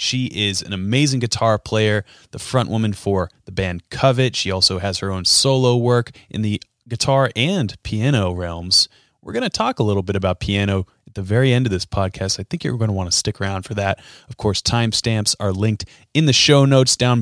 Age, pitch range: 30-49, 100-130 Hz